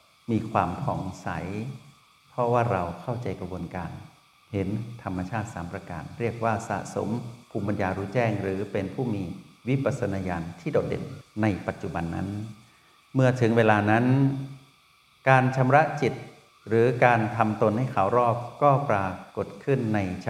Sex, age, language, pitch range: male, 60-79, Thai, 95-120 Hz